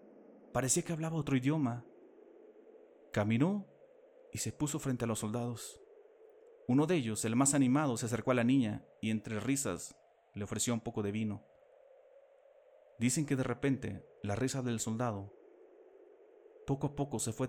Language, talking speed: Spanish, 160 wpm